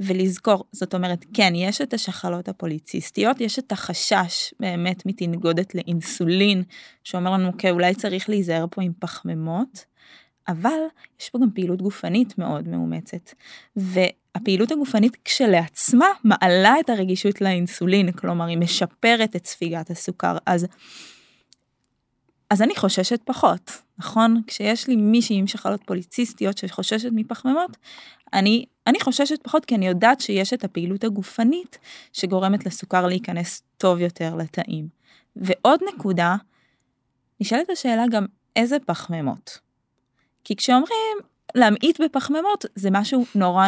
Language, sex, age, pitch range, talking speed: Hebrew, female, 20-39, 180-235 Hz, 120 wpm